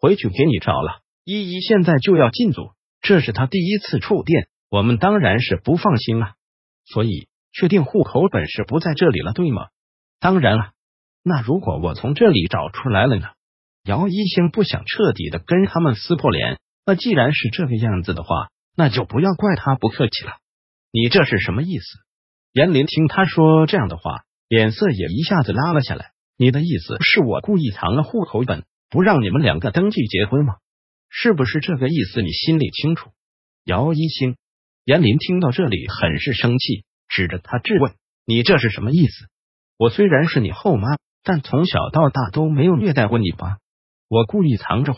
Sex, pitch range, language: male, 110-165 Hz, Chinese